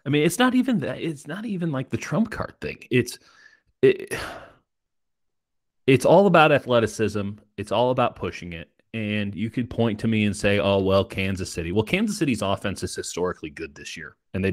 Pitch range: 85-110 Hz